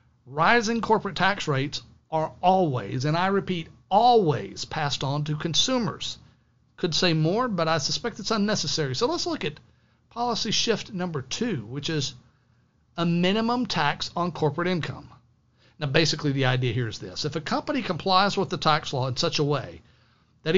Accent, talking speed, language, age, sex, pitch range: American, 170 wpm, English, 50-69, male, 135-190 Hz